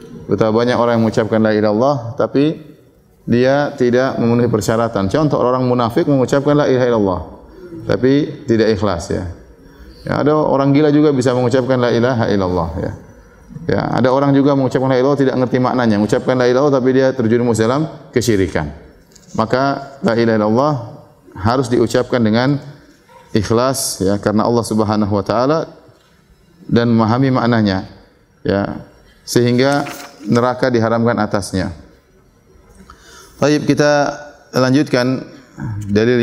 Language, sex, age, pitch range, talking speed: Indonesian, male, 30-49, 115-140 Hz, 135 wpm